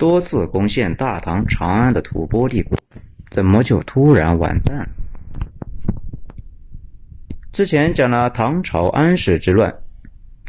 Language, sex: Chinese, male